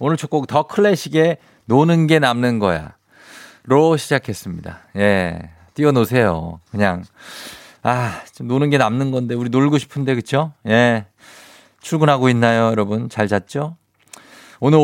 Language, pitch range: Korean, 105-145 Hz